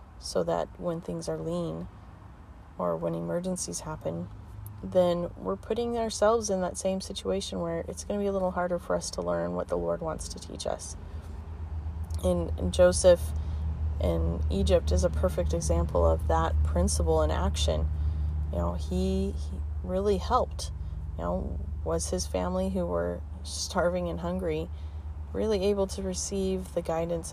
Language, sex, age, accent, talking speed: English, female, 30-49, American, 160 wpm